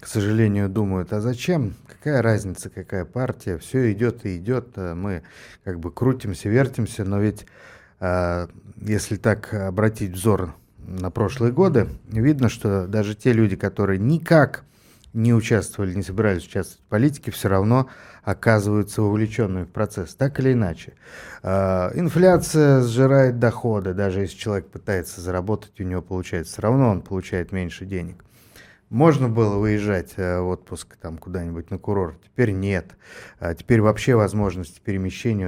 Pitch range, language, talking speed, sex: 95-120 Hz, Russian, 140 wpm, male